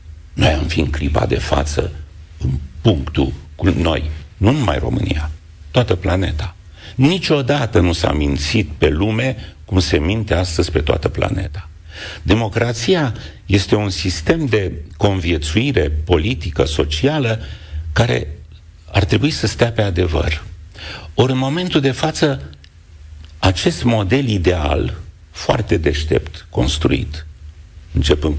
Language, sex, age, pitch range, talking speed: Romanian, male, 60-79, 80-110 Hz, 120 wpm